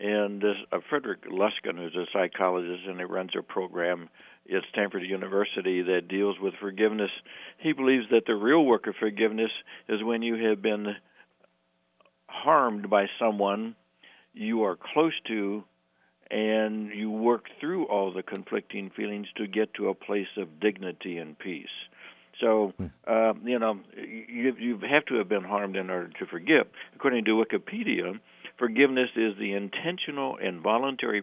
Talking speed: 155 wpm